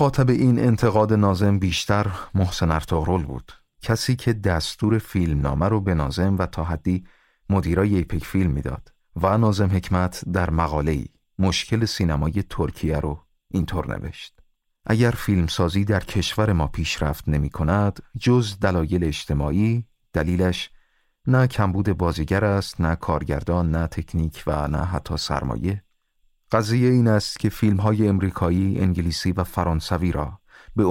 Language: Persian